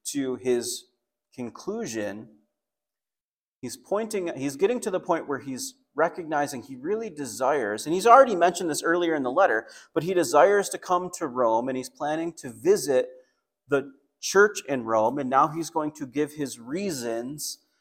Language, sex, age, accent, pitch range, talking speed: English, male, 30-49, American, 125-170 Hz, 165 wpm